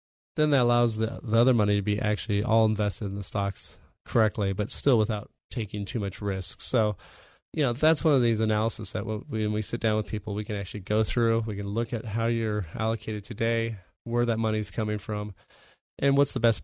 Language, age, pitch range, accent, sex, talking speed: English, 30-49, 105-120 Hz, American, male, 215 wpm